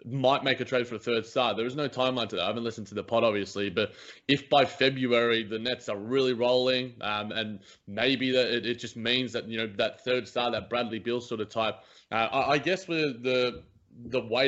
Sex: male